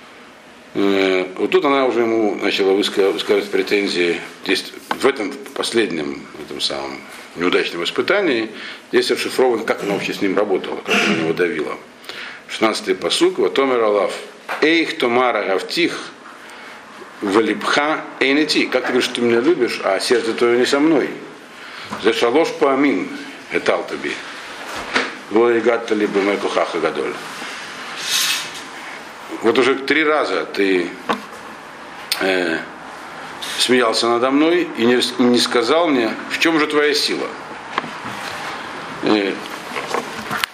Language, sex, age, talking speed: Russian, male, 60-79, 115 wpm